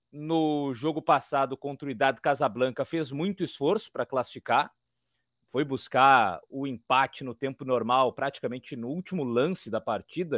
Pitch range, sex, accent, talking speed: 135-200 Hz, male, Brazilian, 145 wpm